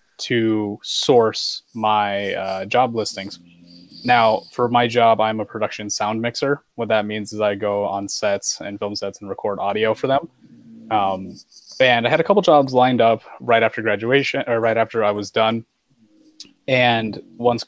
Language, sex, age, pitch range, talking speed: English, male, 20-39, 105-120 Hz, 175 wpm